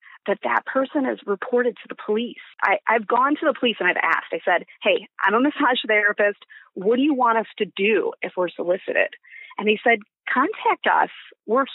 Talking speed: 200 wpm